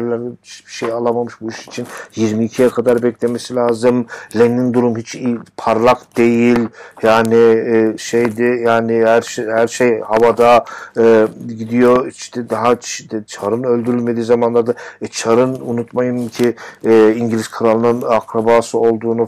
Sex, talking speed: male, 120 wpm